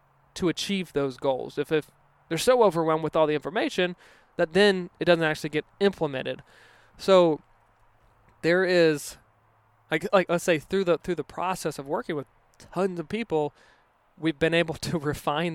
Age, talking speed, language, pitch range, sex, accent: 20-39, 165 wpm, English, 130-160 Hz, male, American